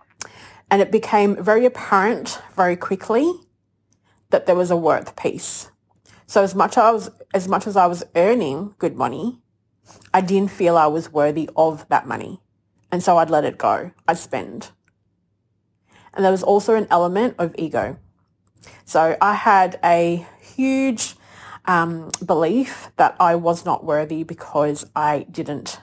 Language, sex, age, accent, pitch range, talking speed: English, female, 30-49, Australian, 150-205 Hz, 145 wpm